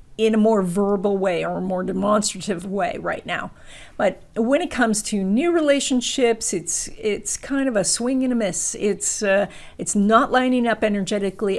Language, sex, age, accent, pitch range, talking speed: English, female, 50-69, American, 195-245 Hz, 180 wpm